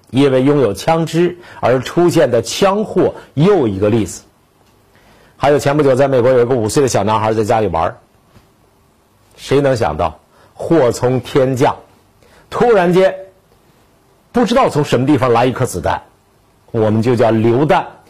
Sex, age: male, 50-69